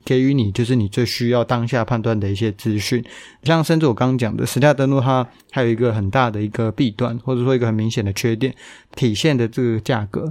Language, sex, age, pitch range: Chinese, male, 20-39, 115-130 Hz